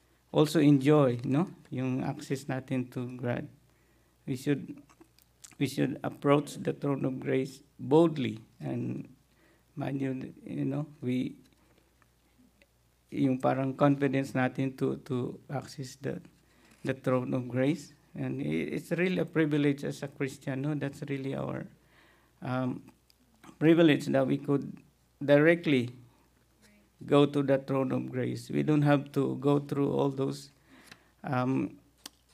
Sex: male